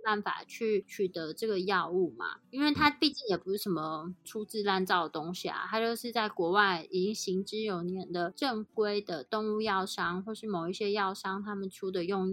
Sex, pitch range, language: female, 185-220 Hz, Chinese